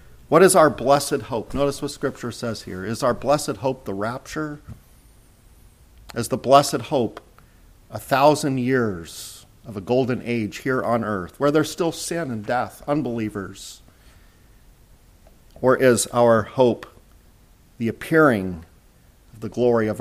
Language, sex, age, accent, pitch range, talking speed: English, male, 50-69, American, 110-140 Hz, 140 wpm